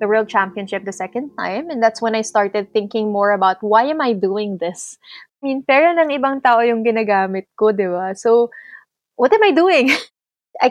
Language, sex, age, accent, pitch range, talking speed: English, female, 20-39, Filipino, 205-245 Hz, 155 wpm